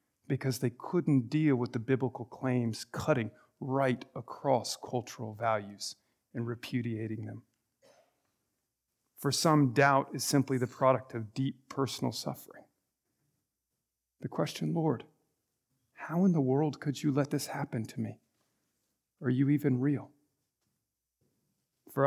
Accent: American